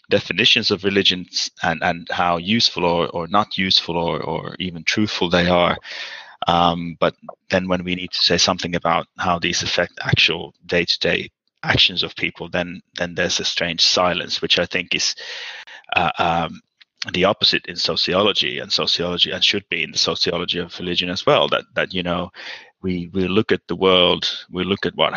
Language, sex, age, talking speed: English, male, 30-49, 185 wpm